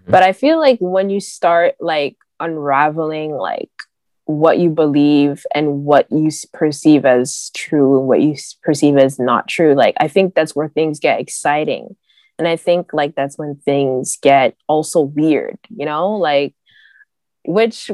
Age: 20-39